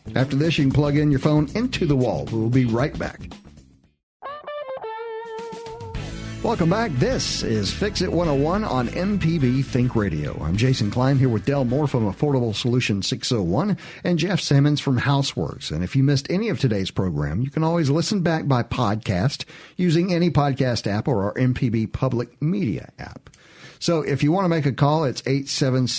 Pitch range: 115-155 Hz